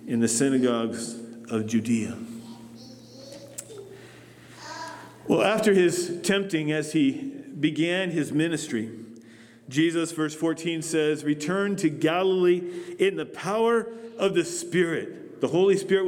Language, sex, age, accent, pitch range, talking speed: English, male, 40-59, American, 160-210 Hz, 110 wpm